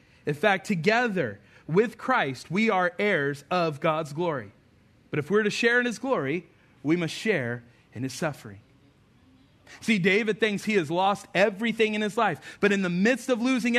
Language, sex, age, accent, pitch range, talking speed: English, male, 40-59, American, 135-210 Hz, 180 wpm